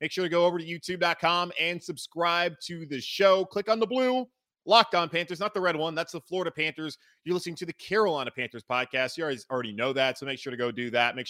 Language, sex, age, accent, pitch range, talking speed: English, male, 30-49, American, 150-190 Hz, 240 wpm